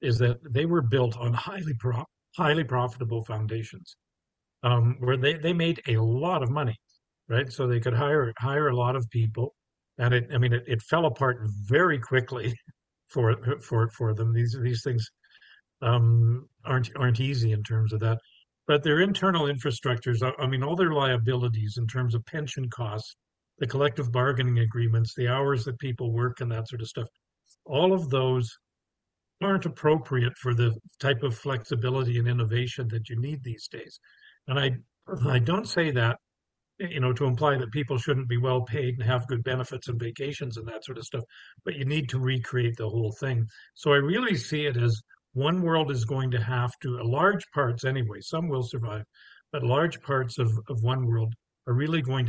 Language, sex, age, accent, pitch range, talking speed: English, male, 50-69, American, 115-140 Hz, 190 wpm